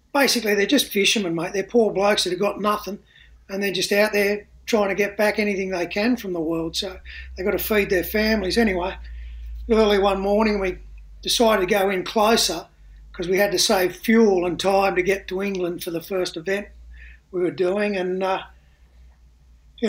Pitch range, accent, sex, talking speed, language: 190-240 Hz, Australian, male, 200 wpm, English